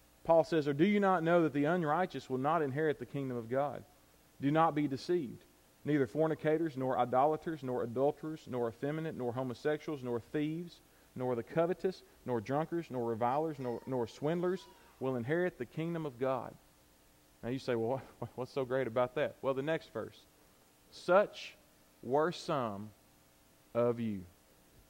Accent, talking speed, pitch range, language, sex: American, 160 wpm, 105-160 Hz, English, male